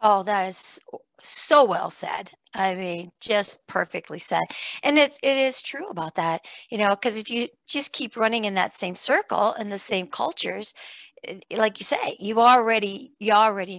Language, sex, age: English, female, 50-69